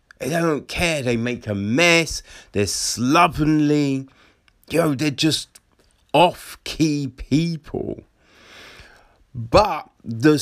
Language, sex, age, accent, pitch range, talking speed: English, male, 30-49, British, 105-150 Hz, 90 wpm